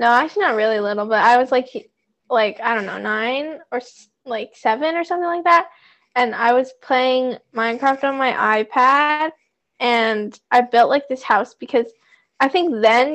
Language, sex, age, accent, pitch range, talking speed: English, female, 10-29, American, 235-275 Hz, 185 wpm